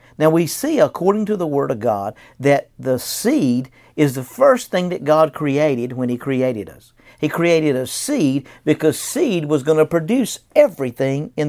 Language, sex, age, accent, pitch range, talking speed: English, male, 50-69, American, 130-180 Hz, 185 wpm